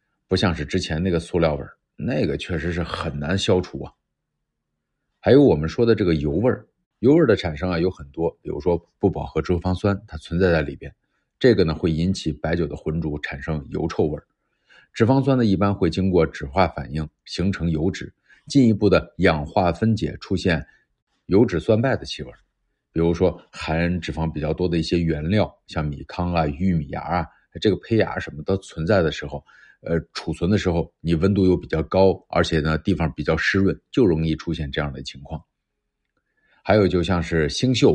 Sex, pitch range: male, 80-95 Hz